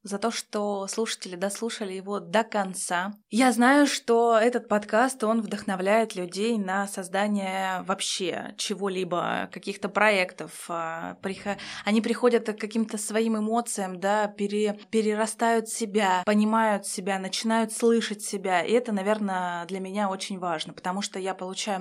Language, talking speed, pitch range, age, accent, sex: Russian, 125 wpm, 195-230 Hz, 20-39, native, female